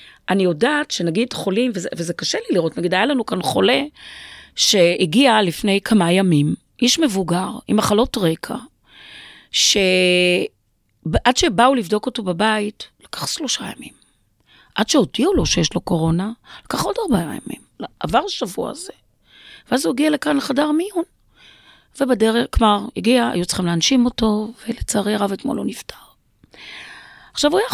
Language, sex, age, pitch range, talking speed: Hebrew, female, 40-59, 180-235 Hz, 140 wpm